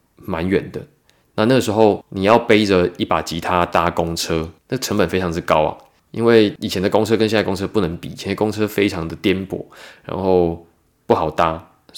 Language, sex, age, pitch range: Chinese, male, 20-39, 90-110 Hz